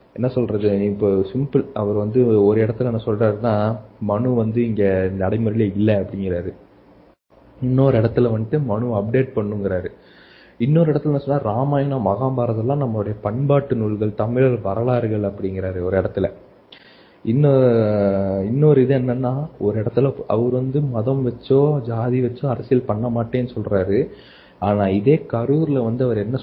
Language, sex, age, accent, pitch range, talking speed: Tamil, male, 20-39, native, 105-130 Hz, 130 wpm